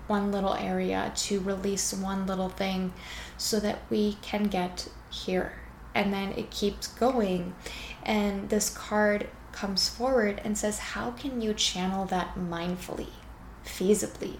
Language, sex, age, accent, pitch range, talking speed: English, female, 10-29, American, 180-205 Hz, 140 wpm